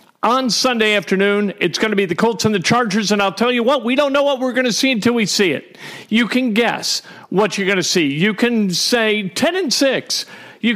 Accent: American